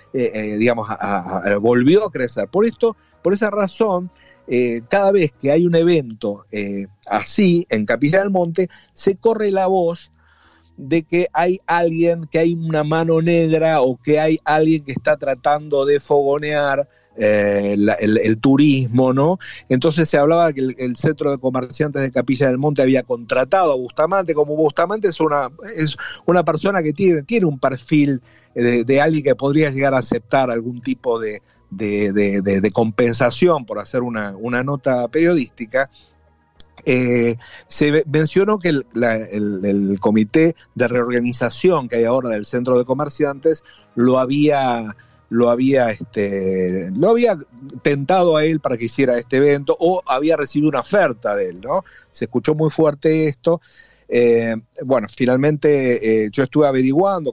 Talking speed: 165 wpm